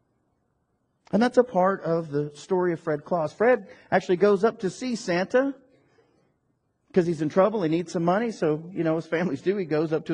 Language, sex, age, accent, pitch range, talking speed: English, male, 40-59, American, 120-180 Hz, 205 wpm